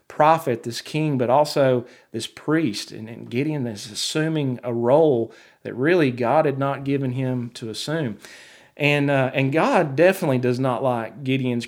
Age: 40-59